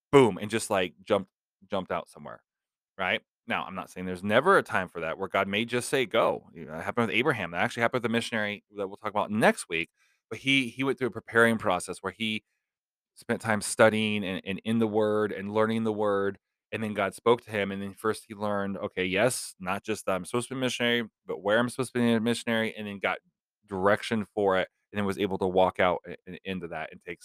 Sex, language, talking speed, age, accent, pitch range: male, English, 250 wpm, 20-39, American, 95-120 Hz